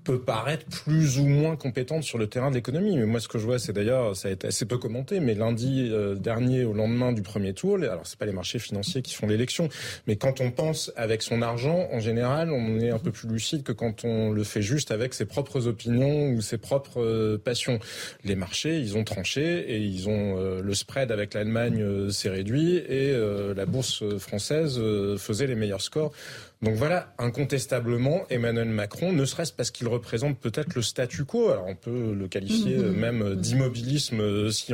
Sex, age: male, 30-49